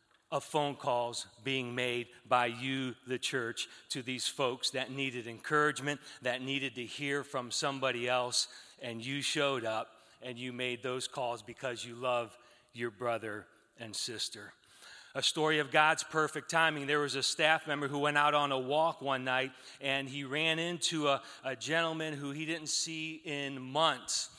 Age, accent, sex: 40-59, American, male